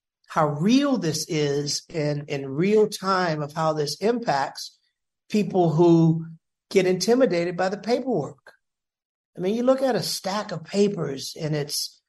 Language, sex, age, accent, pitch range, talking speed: English, male, 50-69, American, 155-190 Hz, 150 wpm